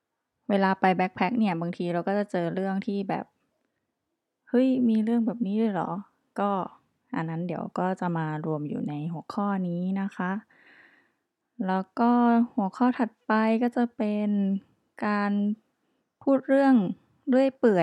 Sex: female